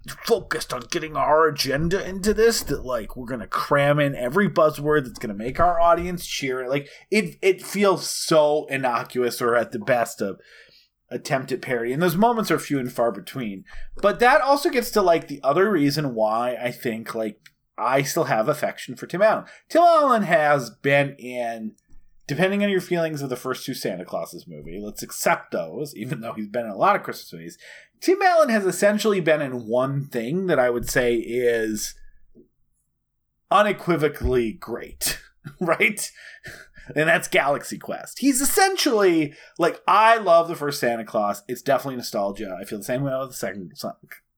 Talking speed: 180 wpm